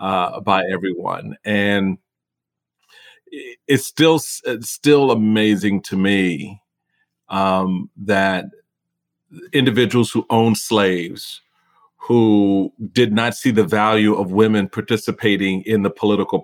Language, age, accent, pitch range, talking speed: English, 40-59, American, 100-120 Hz, 105 wpm